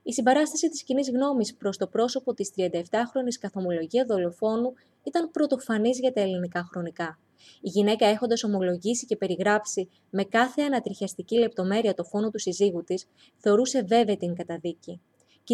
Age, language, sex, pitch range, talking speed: 20-39, Greek, female, 200-250 Hz, 155 wpm